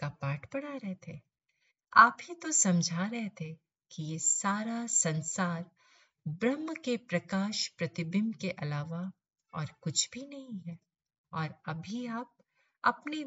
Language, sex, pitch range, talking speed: Hindi, female, 160-230 Hz, 140 wpm